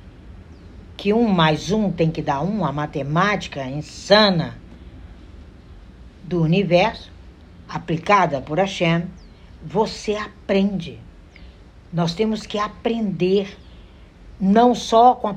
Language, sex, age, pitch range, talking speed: Portuguese, female, 60-79, 140-225 Hz, 100 wpm